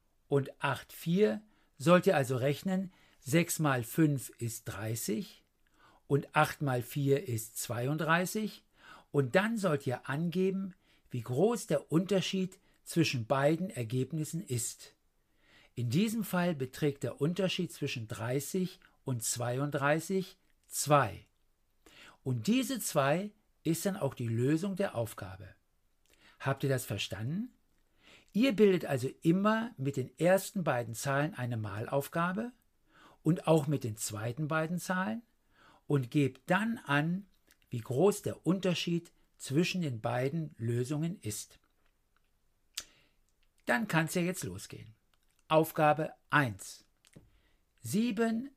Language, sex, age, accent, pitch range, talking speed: German, male, 60-79, German, 120-185 Hz, 115 wpm